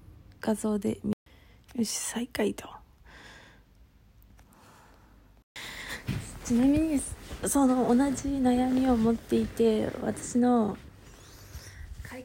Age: 20-39